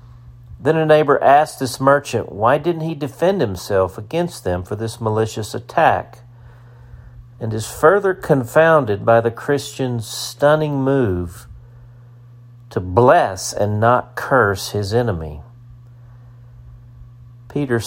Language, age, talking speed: English, 50-69, 115 wpm